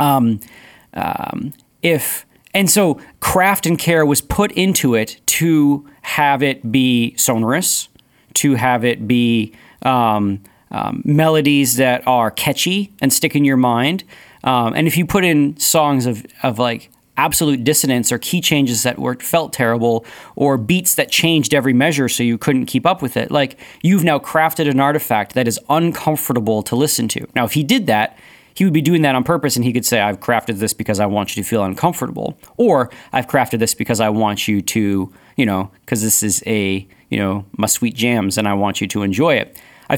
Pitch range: 110-150 Hz